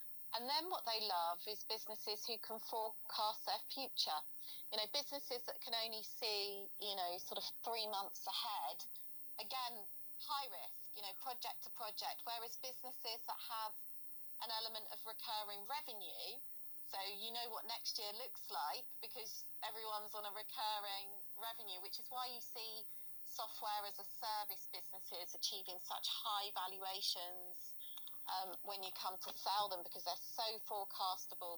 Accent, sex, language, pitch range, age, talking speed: British, female, English, 185-225 Hz, 30-49, 155 wpm